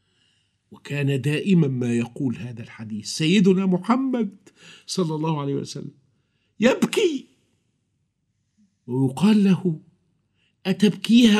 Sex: male